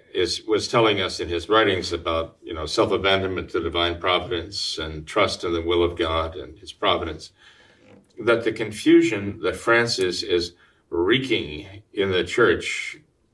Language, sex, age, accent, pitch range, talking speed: English, male, 50-69, American, 95-130 Hz, 150 wpm